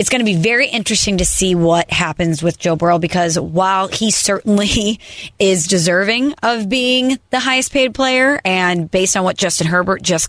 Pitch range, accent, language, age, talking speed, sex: 175-230 Hz, American, English, 30-49, 185 wpm, female